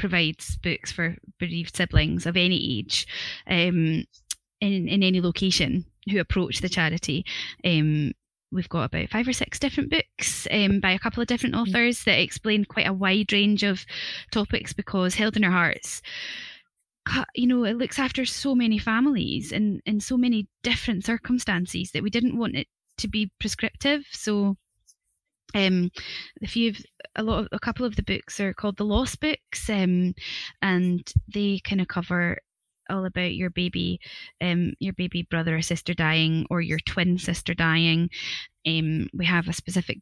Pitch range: 175-205 Hz